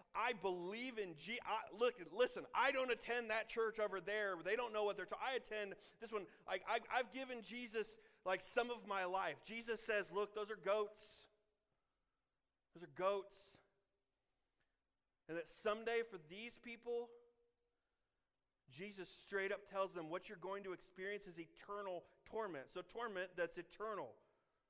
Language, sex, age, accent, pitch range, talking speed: English, male, 40-59, American, 165-215 Hz, 160 wpm